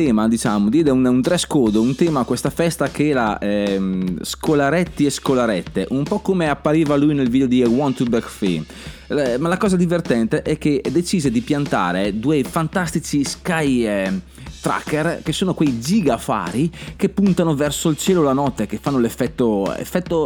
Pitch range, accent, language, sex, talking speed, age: 115-160 Hz, native, Italian, male, 175 wpm, 30-49